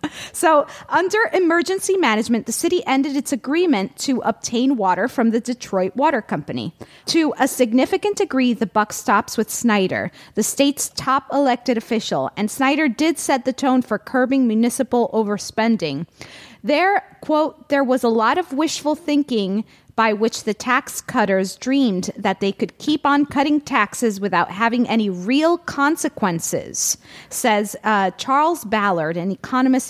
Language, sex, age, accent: English, female, 30-49, American